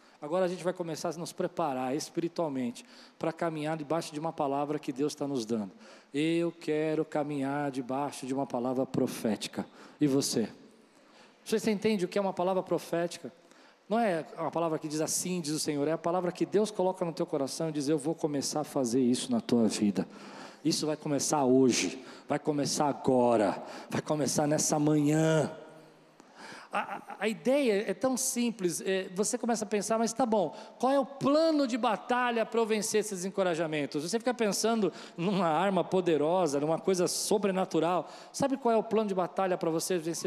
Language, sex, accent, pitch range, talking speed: Portuguese, male, Brazilian, 150-215 Hz, 185 wpm